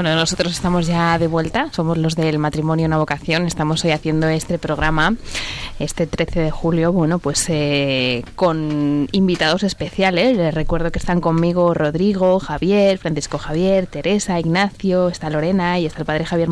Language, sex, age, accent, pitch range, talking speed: Spanish, female, 20-39, Spanish, 155-220 Hz, 165 wpm